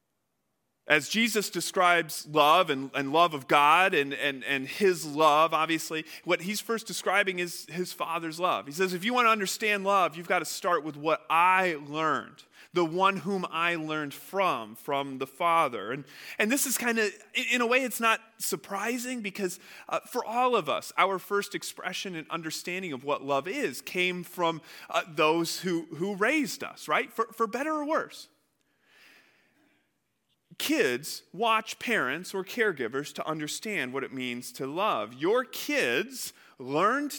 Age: 30-49